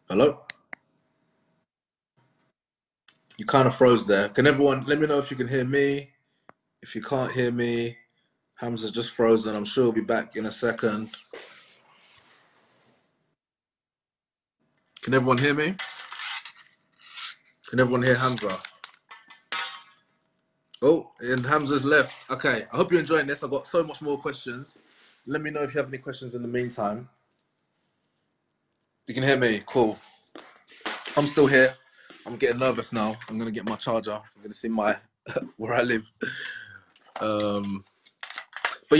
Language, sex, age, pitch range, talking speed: English, male, 20-39, 115-140 Hz, 145 wpm